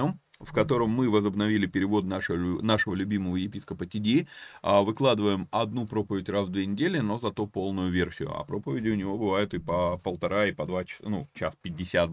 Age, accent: 30-49, native